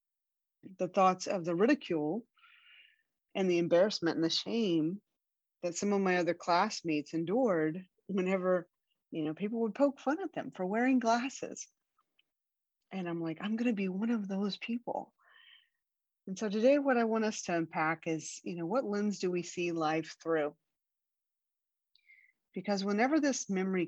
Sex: female